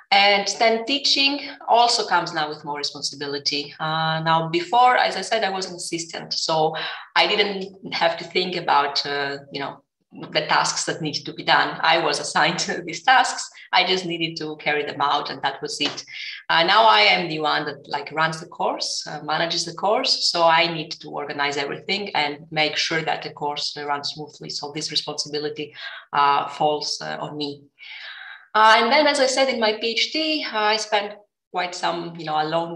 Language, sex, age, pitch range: English, female, 30-49, 150-195 Hz